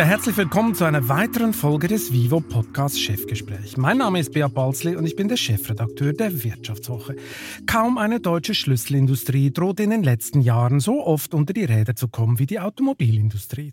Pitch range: 125-180 Hz